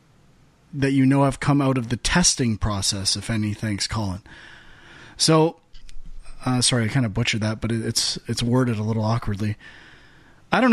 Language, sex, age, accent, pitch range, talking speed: English, male, 30-49, American, 125-155 Hz, 180 wpm